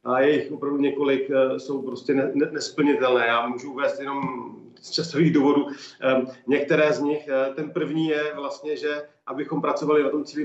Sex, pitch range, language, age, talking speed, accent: male, 135-160 Hz, Czech, 40-59, 155 wpm, native